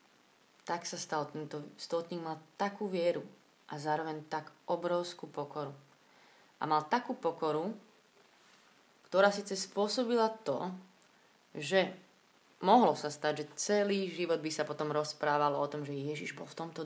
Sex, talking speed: female, 135 wpm